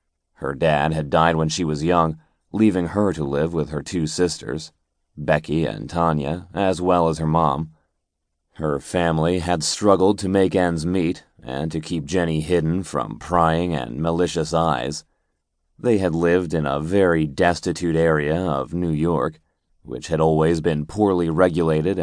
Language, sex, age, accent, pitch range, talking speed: English, male, 30-49, American, 80-90 Hz, 160 wpm